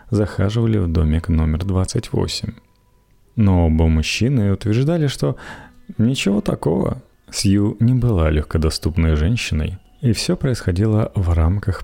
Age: 30-49